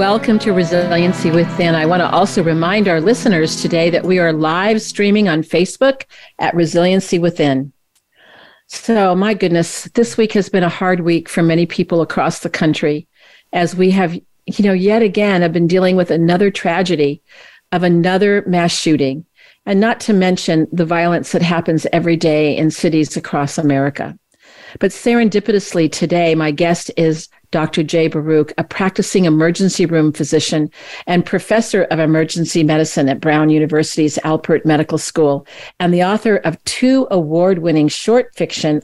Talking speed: 160 wpm